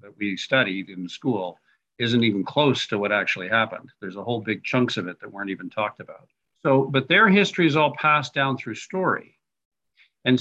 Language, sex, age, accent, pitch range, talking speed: English, male, 50-69, American, 110-145 Hz, 200 wpm